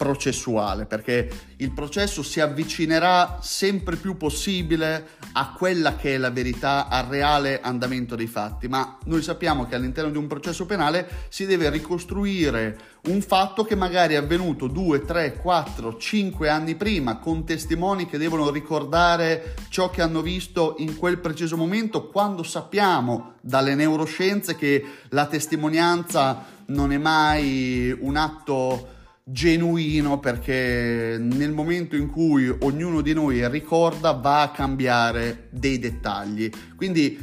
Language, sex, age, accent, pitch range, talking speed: Italian, male, 30-49, native, 125-170 Hz, 135 wpm